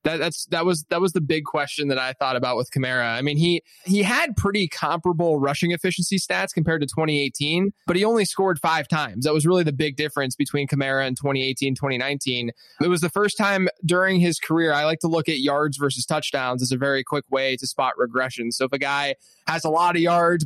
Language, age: English, 20-39